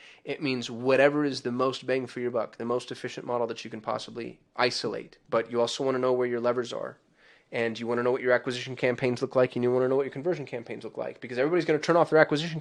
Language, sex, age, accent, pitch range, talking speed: English, male, 20-39, American, 125-145 Hz, 280 wpm